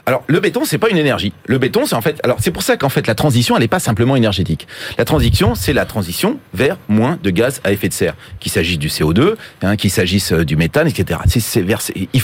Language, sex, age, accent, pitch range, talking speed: French, male, 40-59, French, 115-165 Hz, 255 wpm